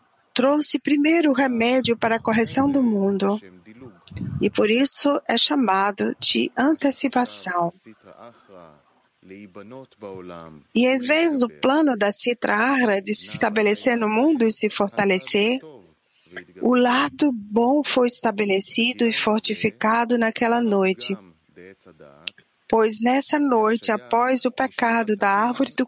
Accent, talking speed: Brazilian, 115 wpm